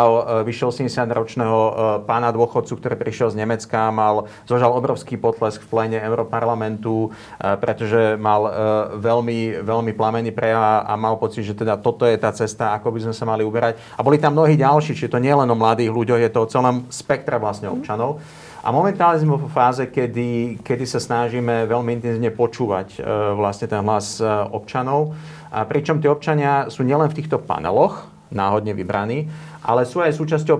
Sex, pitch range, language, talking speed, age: male, 110-140 Hz, Slovak, 170 wpm, 40-59